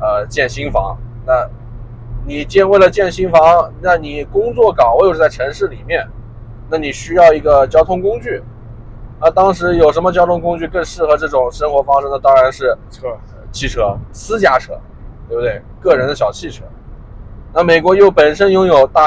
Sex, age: male, 20-39